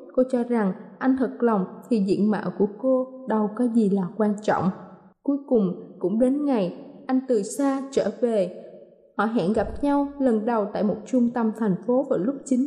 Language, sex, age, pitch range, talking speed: Vietnamese, female, 20-39, 230-280 Hz, 200 wpm